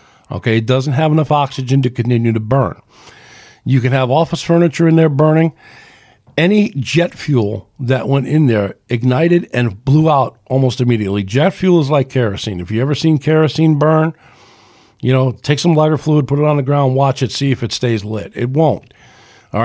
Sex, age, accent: male, 50-69, American